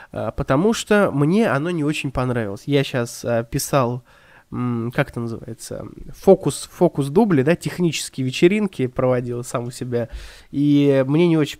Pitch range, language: 125-170 Hz, Russian